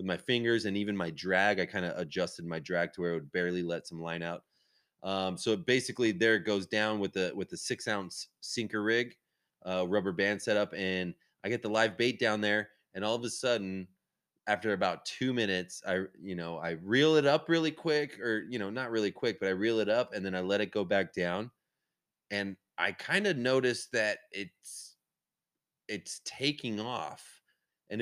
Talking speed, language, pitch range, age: 210 wpm, English, 95-125 Hz, 20-39